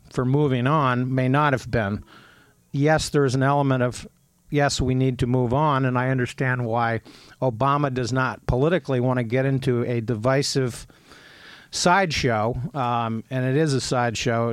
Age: 50-69